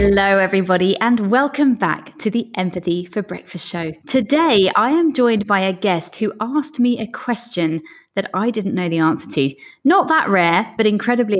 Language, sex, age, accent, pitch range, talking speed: English, female, 20-39, British, 180-245 Hz, 185 wpm